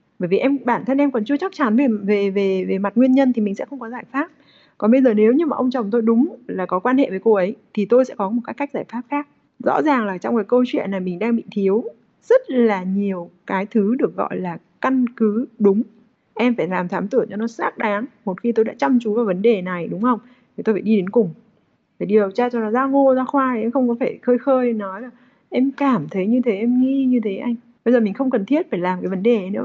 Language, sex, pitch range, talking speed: Vietnamese, female, 200-255 Hz, 285 wpm